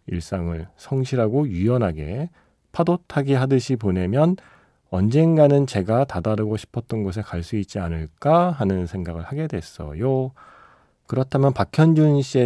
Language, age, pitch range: Korean, 40-59, 90-140 Hz